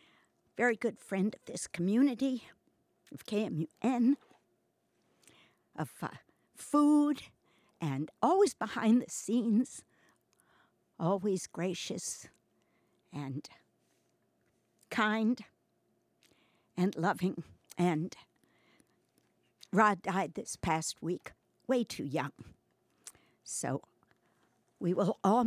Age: 60-79